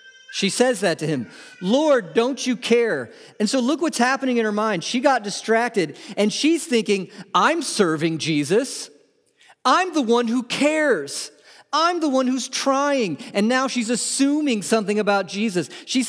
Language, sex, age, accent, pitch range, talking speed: English, male, 40-59, American, 170-250 Hz, 165 wpm